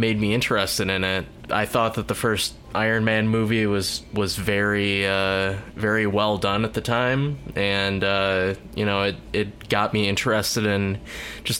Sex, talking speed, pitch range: male, 175 wpm, 95-115 Hz